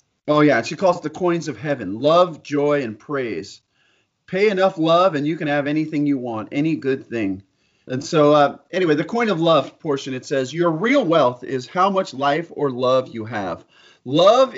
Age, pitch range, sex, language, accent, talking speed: 40-59, 140-190 Hz, male, English, American, 200 wpm